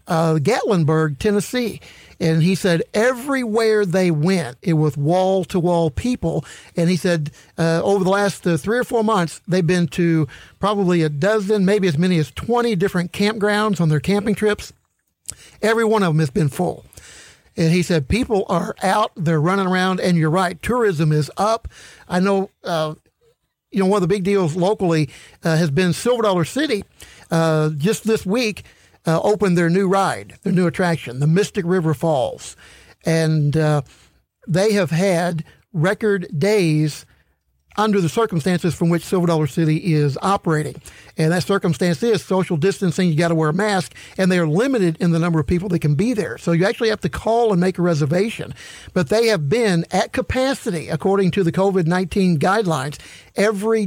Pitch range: 160-205 Hz